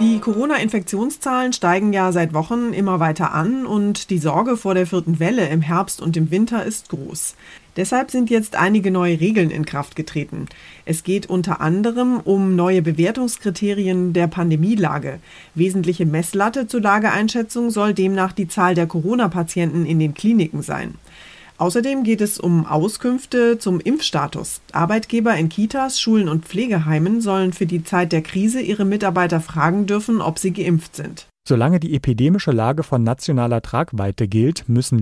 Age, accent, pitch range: 30-49, German, 120-195 Hz